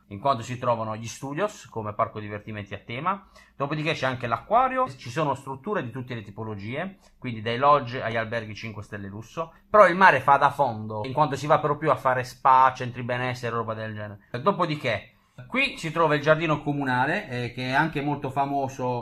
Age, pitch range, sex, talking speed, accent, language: 30-49, 115-145 Hz, male, 195 wpm, native, Italian